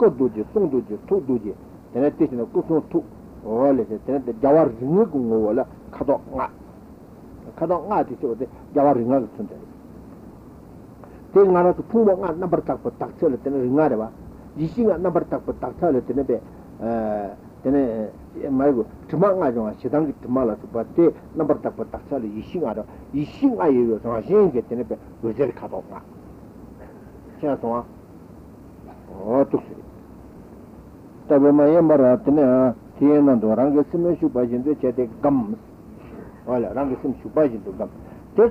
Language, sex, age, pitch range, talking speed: Italian, male, 60-79, 115-180 Hz, 60 wpm